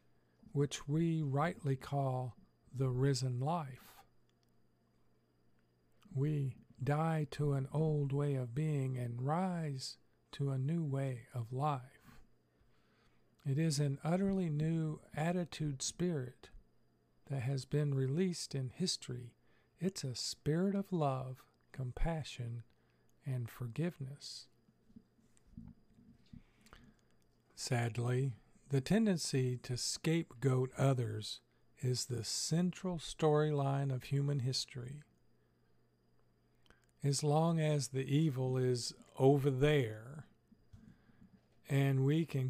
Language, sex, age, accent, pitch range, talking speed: English, male, 50-69, American, 125-150 Hz, 95 wpm